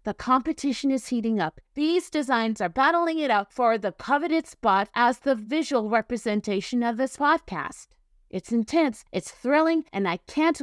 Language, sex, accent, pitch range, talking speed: English, female, American, 215-280 Hz, 165 wpm